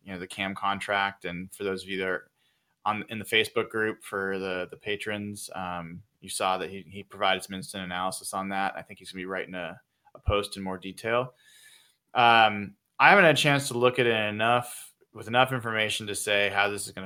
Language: English